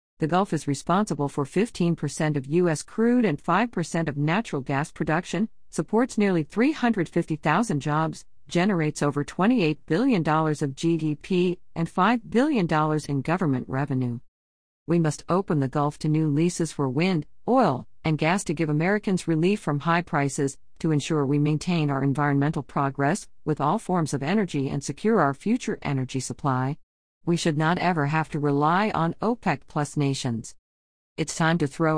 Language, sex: English, female